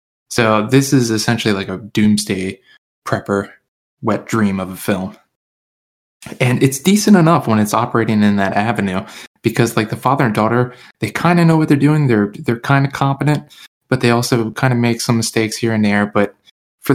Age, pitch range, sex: 20-39, 105-130 Hz, male